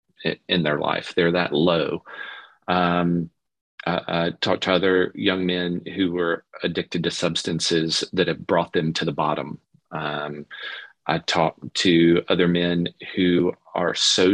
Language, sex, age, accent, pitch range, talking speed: English, male, 40-59, American, 85-95 Hz, 145 wpm